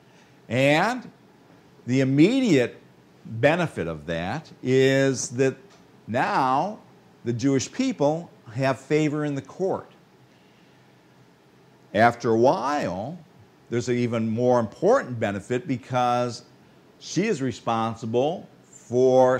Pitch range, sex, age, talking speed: 115-145 Hz, male, 50-69, 95 wpm